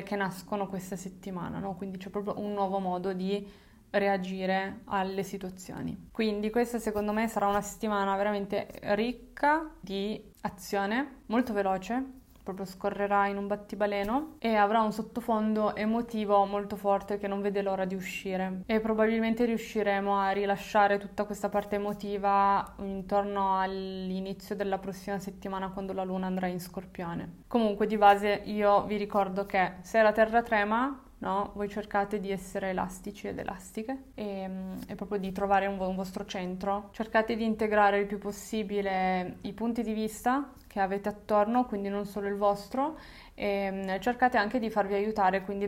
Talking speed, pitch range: 155 wpm, 195-210 Hz